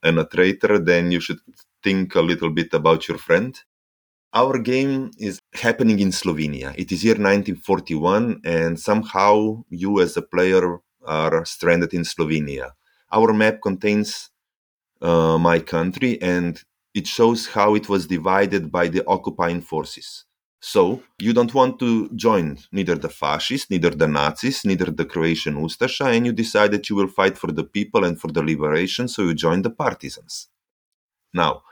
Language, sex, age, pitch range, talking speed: English, male, 30-49, 85-115 Hz, 165 wpm